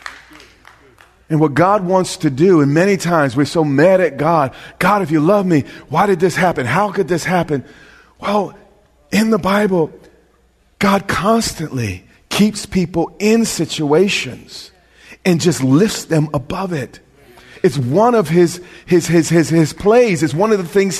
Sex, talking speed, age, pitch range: male, 165 wpm, 40-59, 145-200 Hz